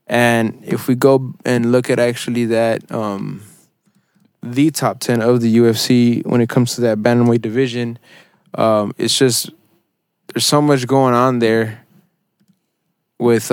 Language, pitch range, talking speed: English, 115-130 Hz, 145 wpm